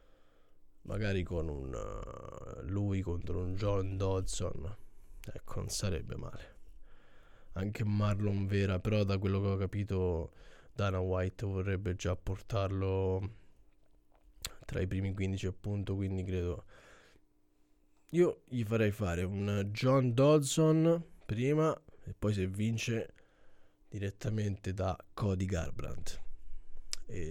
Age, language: 20-39, Italian